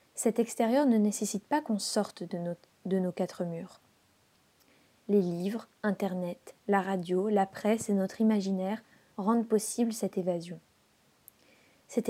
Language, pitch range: French, 190-230 Hz